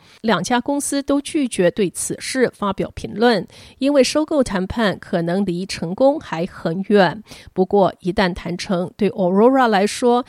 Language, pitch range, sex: Chinese, 185-240 Hz, female